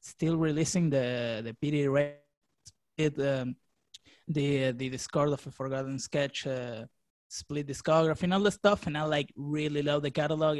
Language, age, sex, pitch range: English, 20-39, male, 145-175 Hz